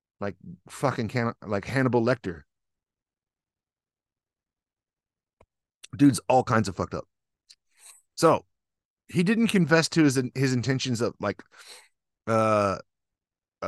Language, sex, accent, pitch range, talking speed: English, male, American, 105-140 Hz, 95 wpm